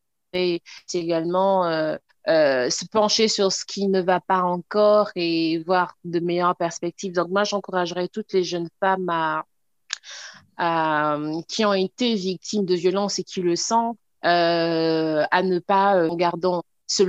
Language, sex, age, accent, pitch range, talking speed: French, female, 30-49, French, 175-200 Hz, 160 wpm